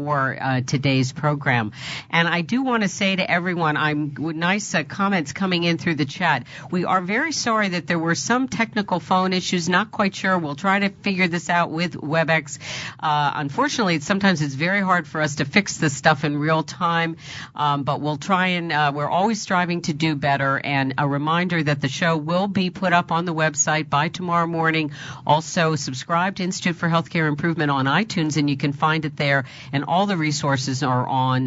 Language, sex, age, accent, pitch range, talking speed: English, female, 50-69, American, 135-175 Hz, 210 wpm